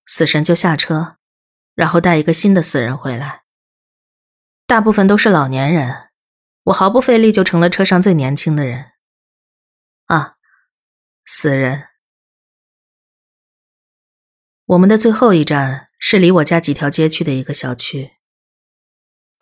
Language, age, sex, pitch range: Chinese, 20-39, female, 135-185 Hz